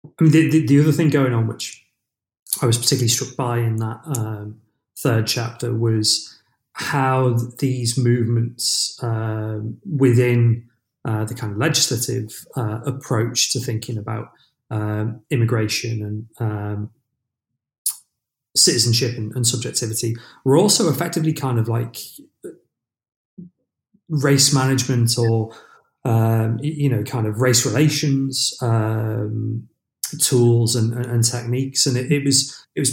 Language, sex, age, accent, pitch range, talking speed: English, male, 30-49, British, 110-130 Hz, 130 wpm